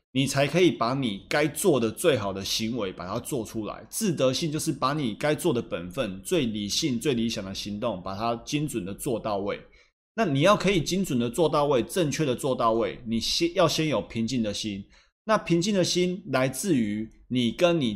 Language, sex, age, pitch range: Chinese, male, 20-39, 110-155 Hz